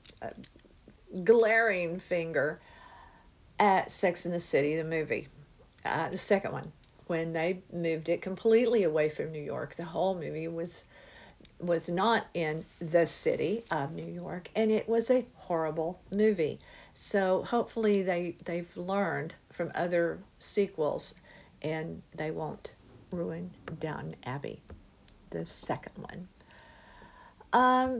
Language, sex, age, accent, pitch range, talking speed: English, female, 50-69, American, 165-220 Hz, 130 wpm